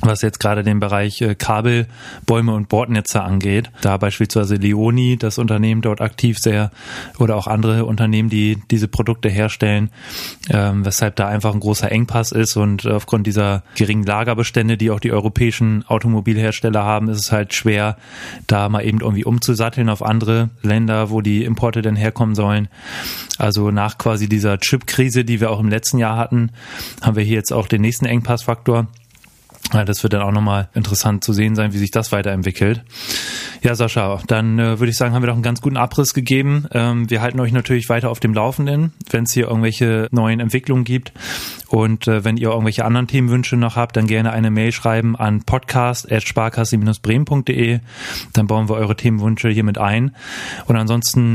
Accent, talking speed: German, 180 wpm